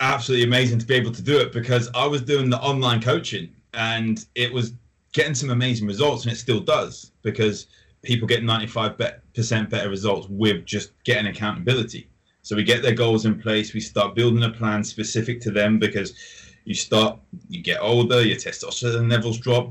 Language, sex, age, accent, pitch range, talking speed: English, male, 20-39, British, 105-125 Hz, 190 wpm